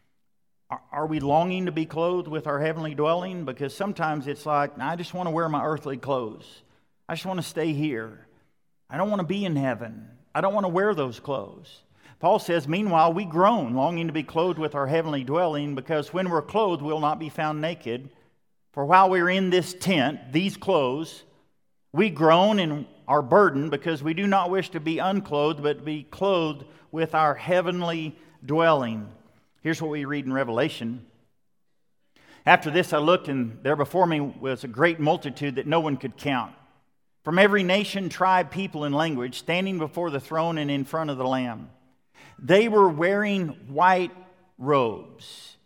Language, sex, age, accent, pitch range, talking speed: English, male, 50-69, American, 145-180 Hz, 180 wpm